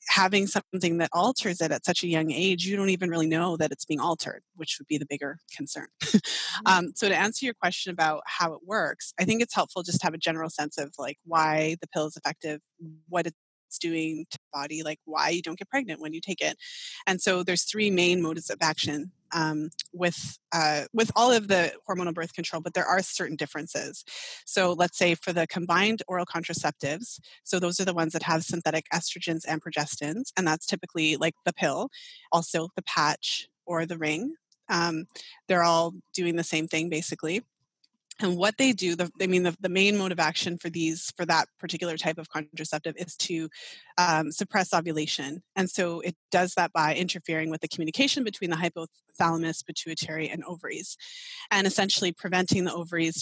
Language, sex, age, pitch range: English, female, 20-39, 160-190 Hz